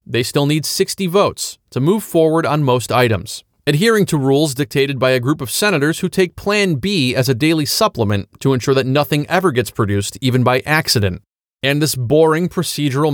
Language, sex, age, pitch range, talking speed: English, male, 30-49, 120-165 Hz, 190 wpm